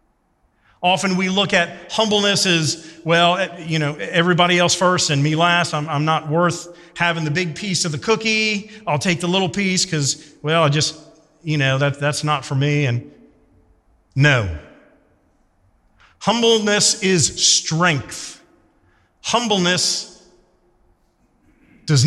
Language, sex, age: English, male, 40-59